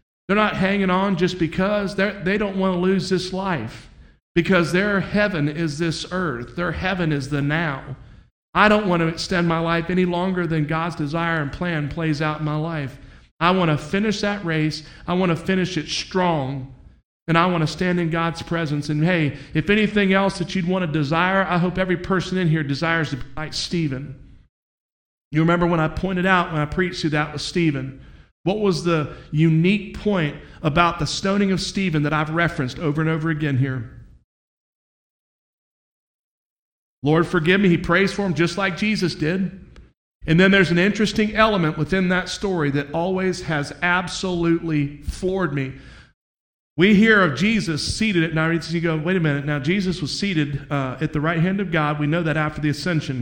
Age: 50-69